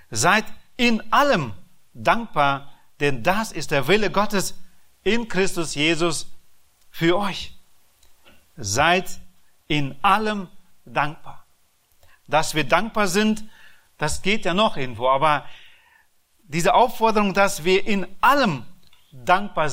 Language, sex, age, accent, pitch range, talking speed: German, male, 40-59, German, 150-215 Hz, 110 wpm